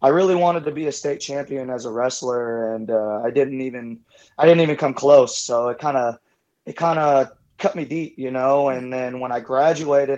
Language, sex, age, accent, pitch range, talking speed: English, male, 20-39, American, 130-155 Hz, 225 wpm